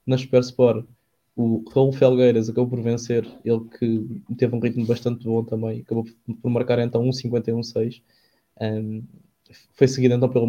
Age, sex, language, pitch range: 20-39, male, English, 115-125 Hz